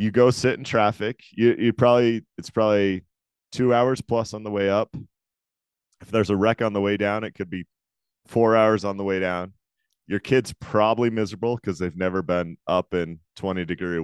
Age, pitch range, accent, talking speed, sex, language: 30-49, 90-110 Hz, American, 195 wpm, male, English